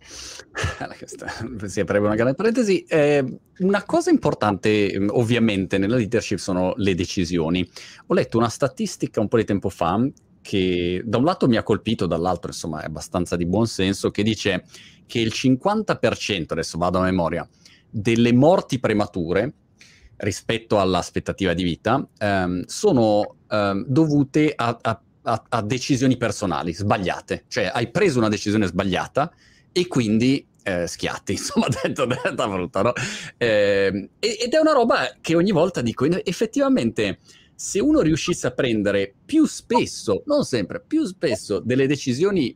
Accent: native